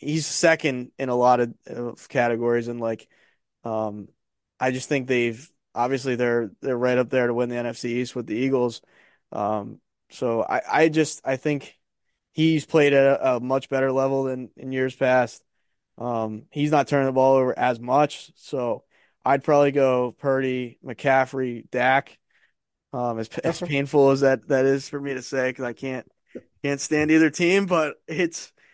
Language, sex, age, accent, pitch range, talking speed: English, male, 20-39, American, 125-140 Hz, 175 wpm